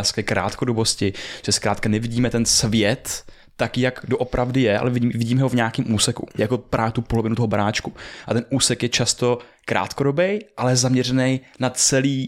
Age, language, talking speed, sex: 20-39, Czech, 160 wpm, male